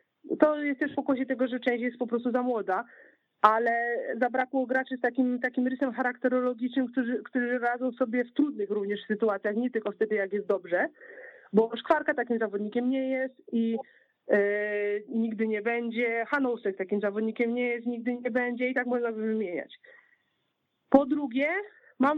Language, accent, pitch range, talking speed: Polish, native, 245-290 Hz, 165 wpm